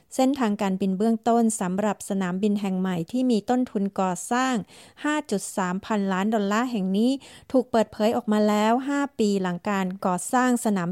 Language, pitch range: Thai, 195-245 Hz